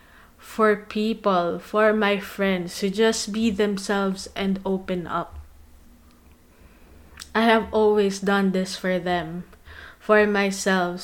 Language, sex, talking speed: English, female, 115 wpm